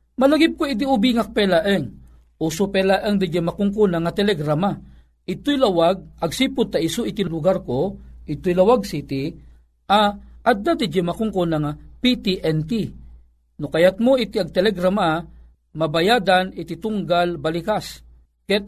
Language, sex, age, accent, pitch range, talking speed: Filipino, male, 50-69, native, 165-240 Hz, 135 wpm